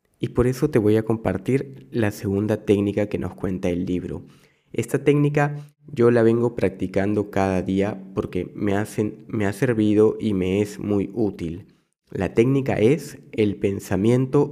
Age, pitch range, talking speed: 20-39, 95-125 Hz, 155 wpm